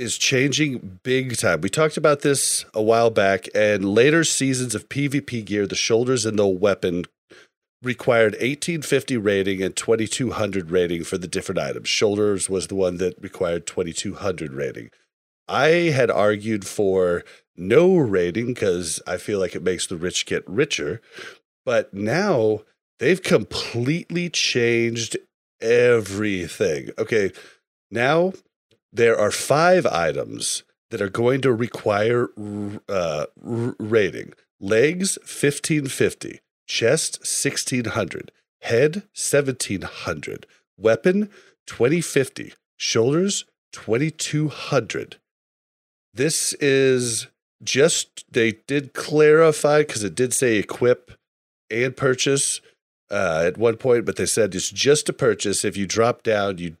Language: English